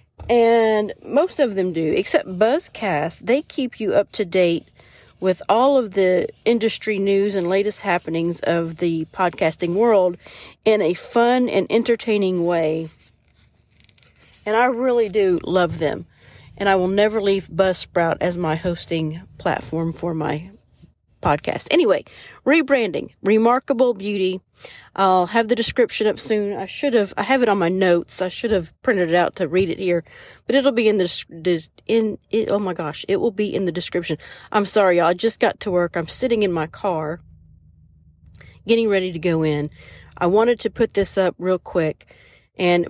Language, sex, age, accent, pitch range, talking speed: English, female, 40-59, American, 170-220 Hz, 170 wpm